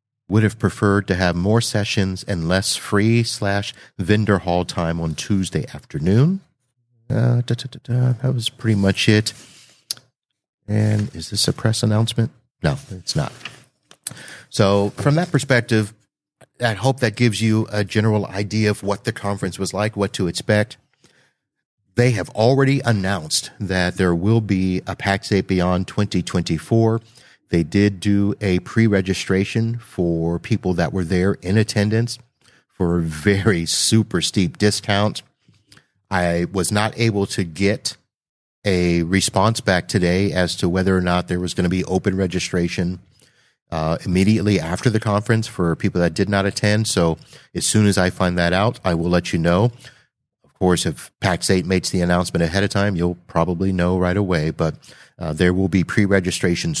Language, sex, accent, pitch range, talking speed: English, male, American, 90-110 Hz, 165 wpm